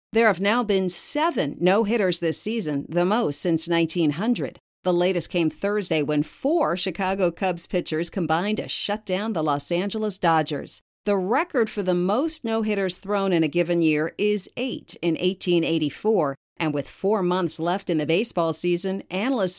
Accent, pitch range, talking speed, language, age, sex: American, 165-220 Hz, 165 wpm, English, 50-69, female